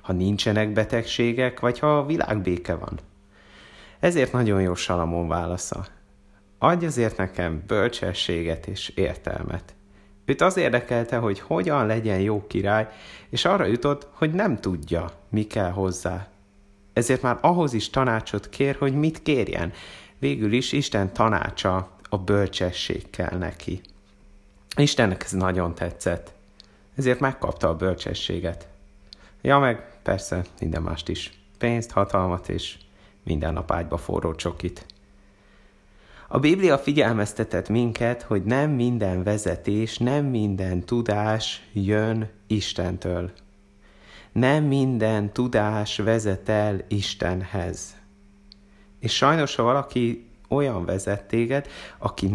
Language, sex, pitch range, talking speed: Hungarian, male, 95-115 Hz, 115 wpm